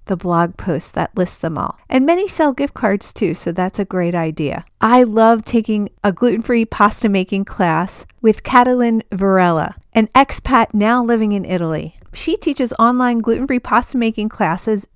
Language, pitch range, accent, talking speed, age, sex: English, 195-250 Hz, American, 170 wpm, 40-59, female